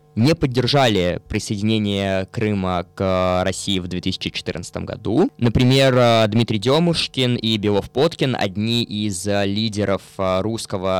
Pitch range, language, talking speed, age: 100-130 Hz, Russian, 105 wpm, 20-39